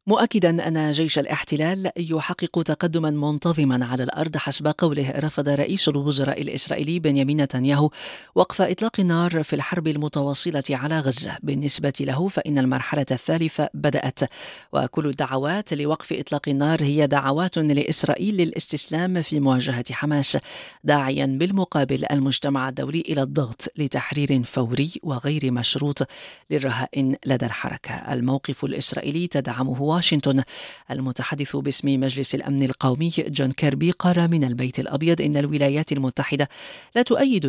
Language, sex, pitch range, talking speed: English, female, 135-160 Hz, 120 wpm